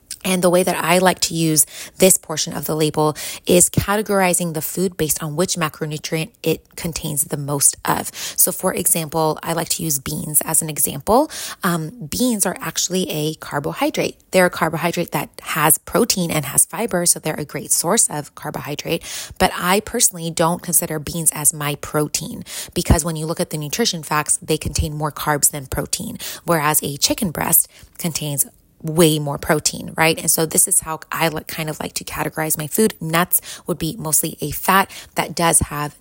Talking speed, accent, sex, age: 190 wpm, American, female, 20-39